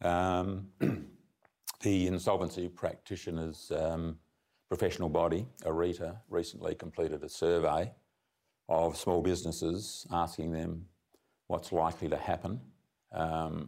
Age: 50-69